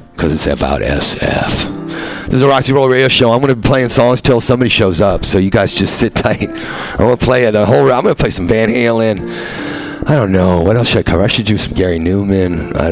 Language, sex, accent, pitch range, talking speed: English, male, American, 95-135 Hz, 245 wpm